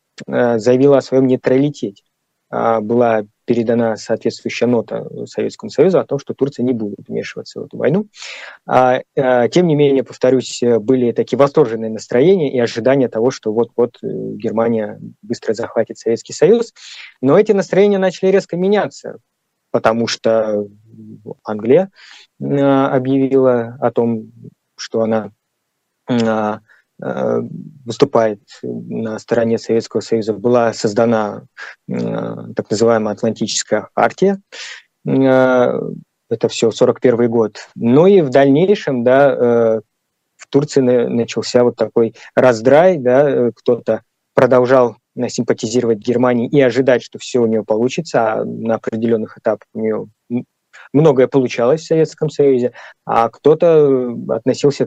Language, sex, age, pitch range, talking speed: Russian, male, 20-39, 115-135 Hz, 115 wpm